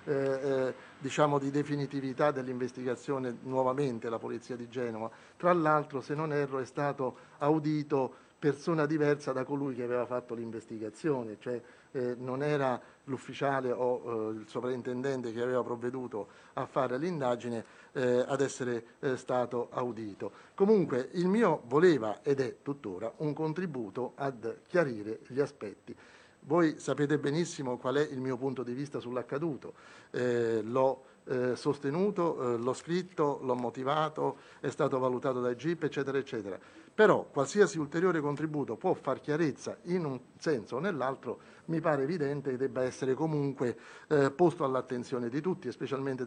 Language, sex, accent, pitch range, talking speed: Italian, male, native, 125-150 Hz, 145 wpm